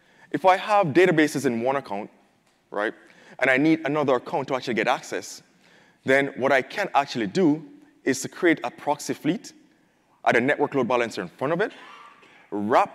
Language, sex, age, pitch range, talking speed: English, male, 20-39, 125-170 Hz, 180 wpm